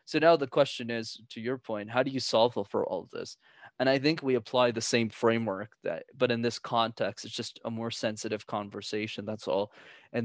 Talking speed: 225 wpm